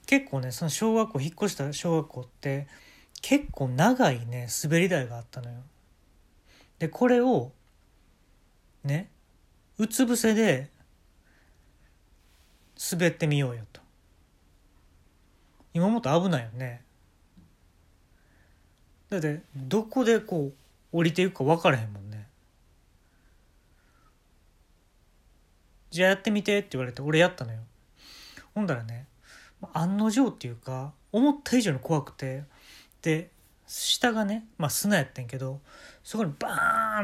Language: Japanese